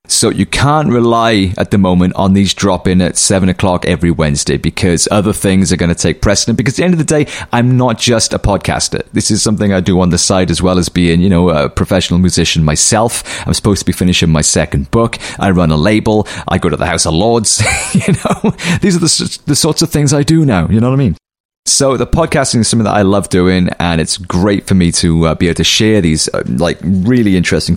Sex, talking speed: male, 250 wpm